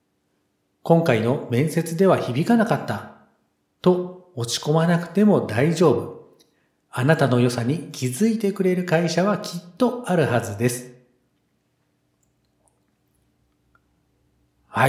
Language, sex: Japanese, male